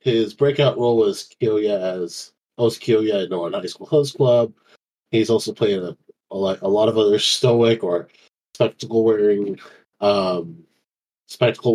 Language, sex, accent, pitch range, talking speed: English, male, American, 110-140 Hz, 150 wpm